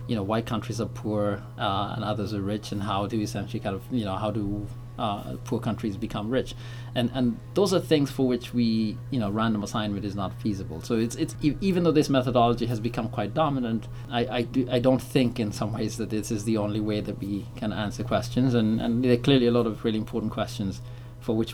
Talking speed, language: 235 wpm, English